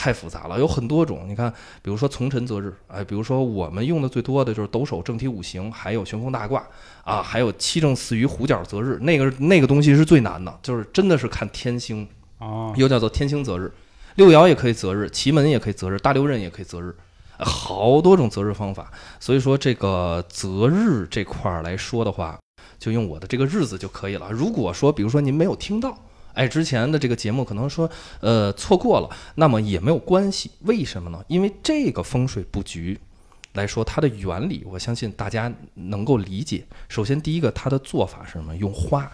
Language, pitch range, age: Chinese, 100-145 Hz, 20-39